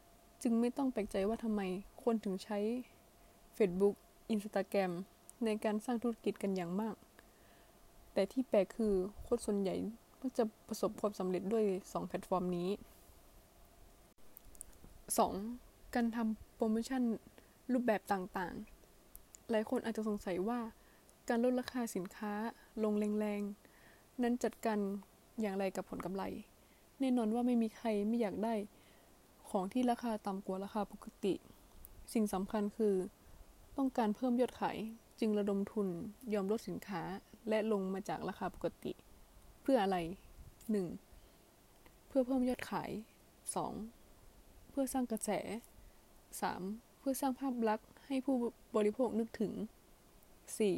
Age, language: 20-39, Thai